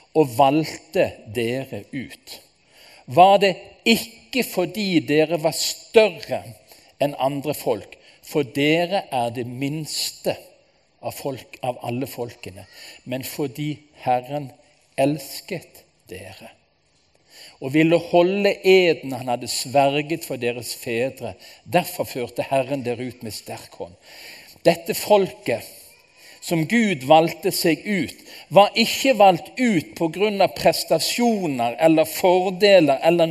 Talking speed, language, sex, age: 115 wpm, Italian, male, 50-69